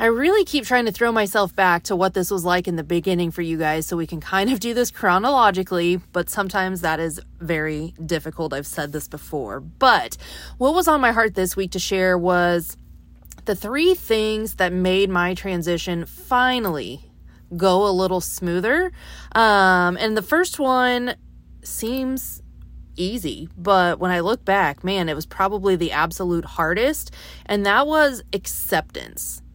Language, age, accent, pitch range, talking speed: English, 30-49, American, 170-215 Hz, 170 wpm